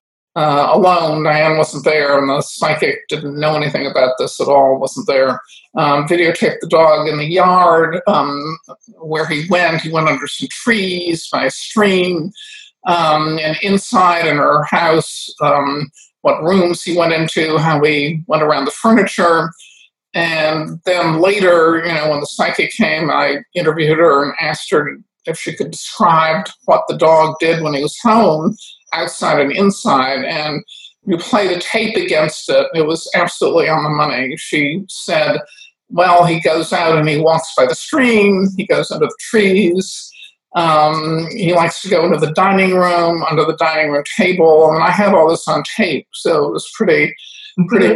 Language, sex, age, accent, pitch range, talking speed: English, male, 50-69, American, 155-190 Hz, 175 wpm